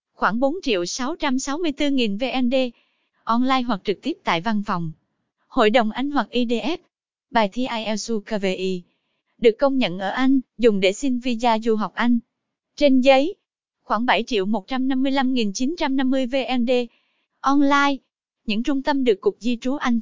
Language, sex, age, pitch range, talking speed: English, female, 20-39, 220-270 Hz, 145 wpm